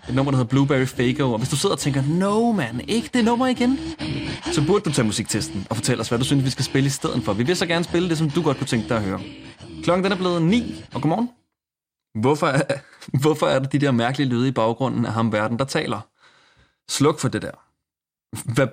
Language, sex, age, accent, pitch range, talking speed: Danish, male, 20-39, native, 115-150 Hz, 245 wpm